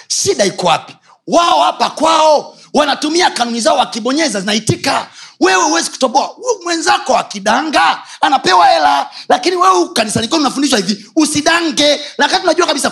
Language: Swahili